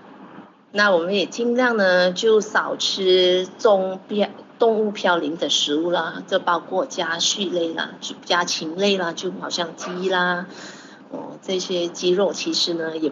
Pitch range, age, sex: 175-225 Hz, 30-49, female